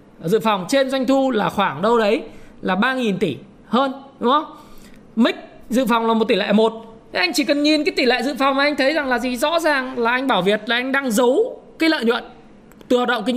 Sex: male